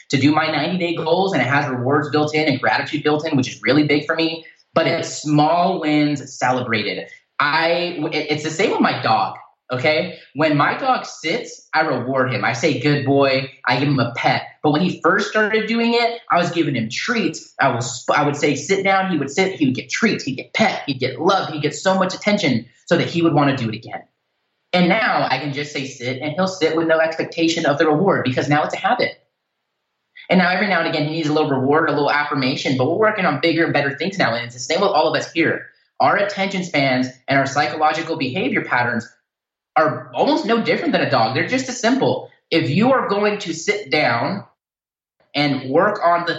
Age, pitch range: 20-39, 140-175 Hz